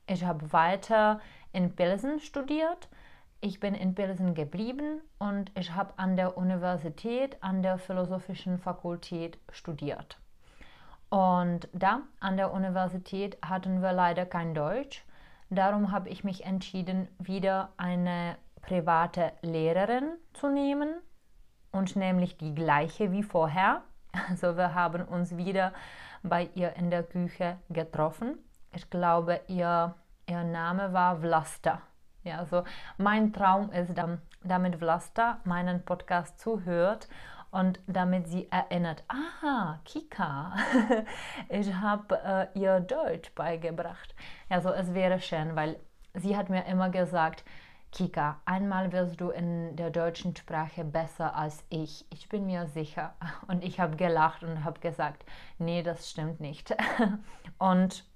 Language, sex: Czech, female